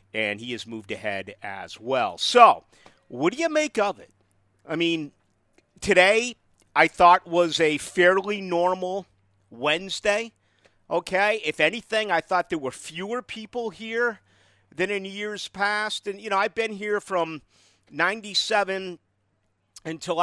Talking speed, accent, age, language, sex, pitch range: 140 wpm, American, 50-69, English, male, 125-190 Hz